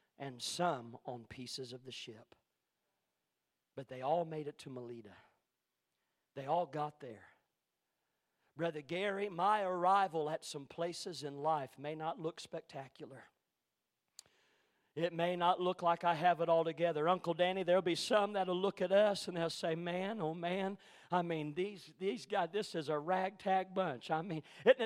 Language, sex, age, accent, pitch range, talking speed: English, male, 50-69, American, 165-195 Hz, 170 wpm